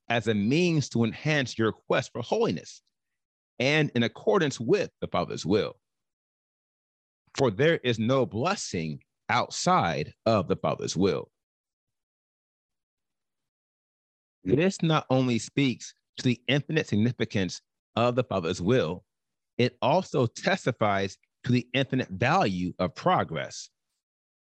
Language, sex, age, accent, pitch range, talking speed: English, male, 30-49, American, 110-140 Hz, 115 wpm